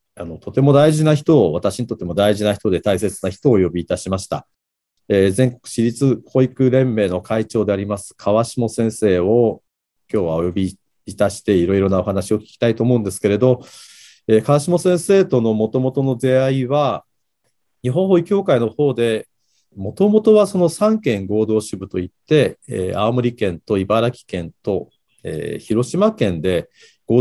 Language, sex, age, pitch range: Japanese, male, 40-59, 100-130 Hz